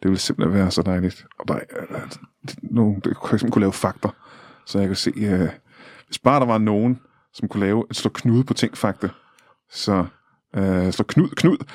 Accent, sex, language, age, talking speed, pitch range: native, male, Danish, 20-39, 180 wpm, 100-145 Hz